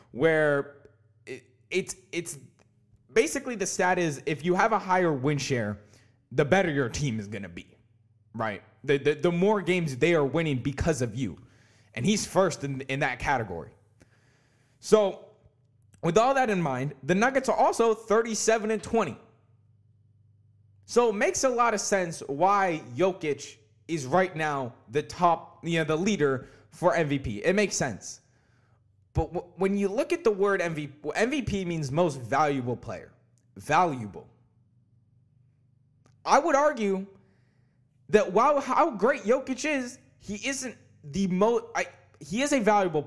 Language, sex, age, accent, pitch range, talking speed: English, male, 20-39, American, 120-195 Hz, 150 wpm